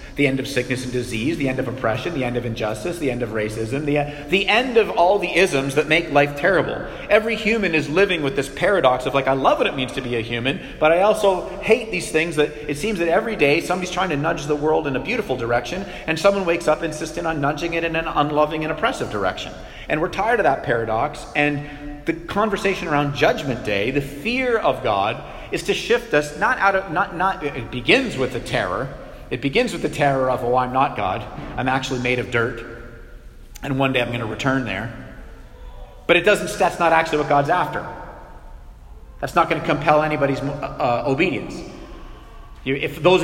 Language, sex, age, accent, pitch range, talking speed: English, male, 40-59, American, 125-165 Hz, 215 wpm